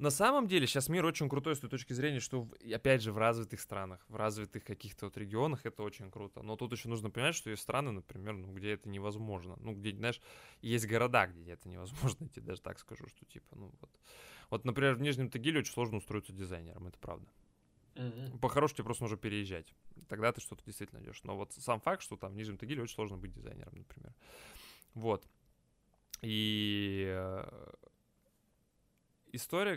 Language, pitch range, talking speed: Russian, 105-130 Hz, 185 wpm